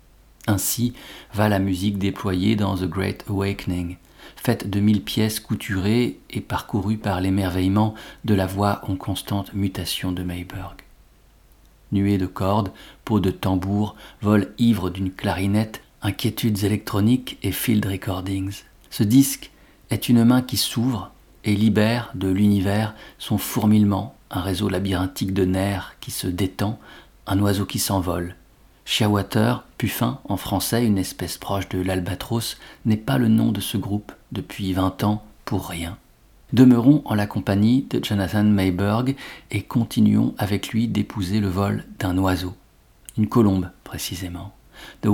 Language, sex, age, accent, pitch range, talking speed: French, male, 40-59, French, 95-110 Hz, 140 wpm